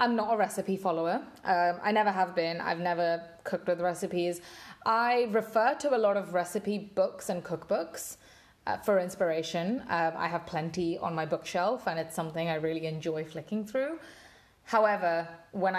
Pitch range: 165-205 Hz